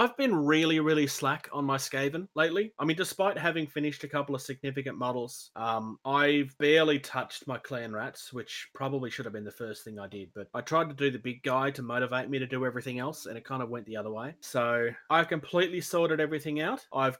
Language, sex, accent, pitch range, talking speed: English, male, Australian, 120-150 Hz, 230 wpm